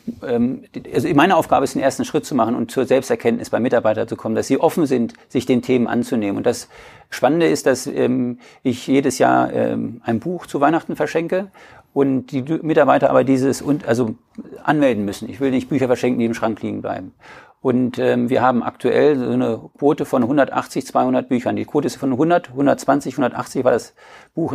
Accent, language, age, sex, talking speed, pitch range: German, German, 50-69, male, 185 wpm, 125-155 Hz